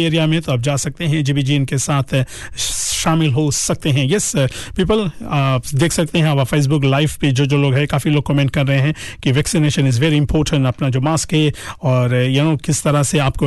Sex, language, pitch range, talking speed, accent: male, Hindi, 140-160 Hz, 130 wpm, native